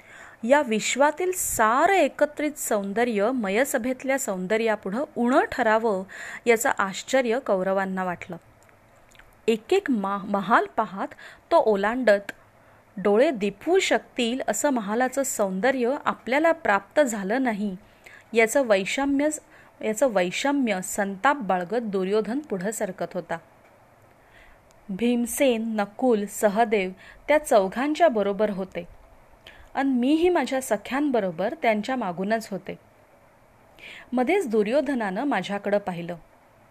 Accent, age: native, 30-49